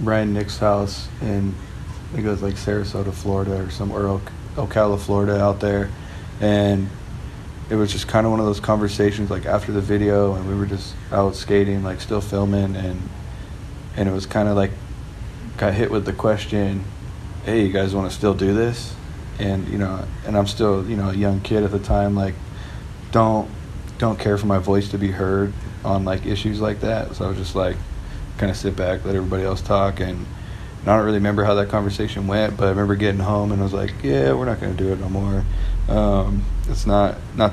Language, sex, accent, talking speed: English, male, American, 215 wpm